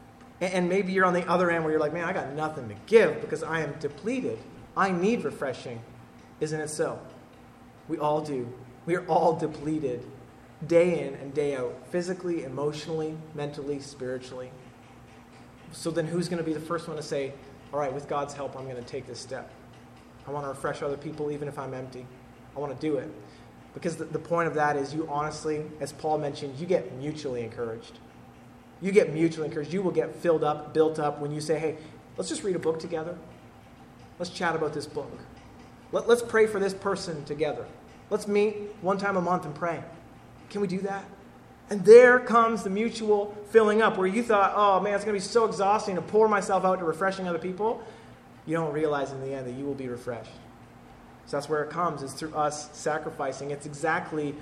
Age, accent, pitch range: 30-49, American, 145-180 Hz